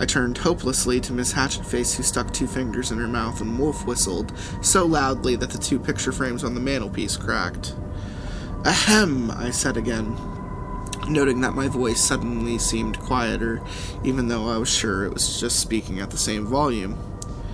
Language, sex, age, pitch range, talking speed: English, male, 20-39, 115-150 Hz, 170 wpm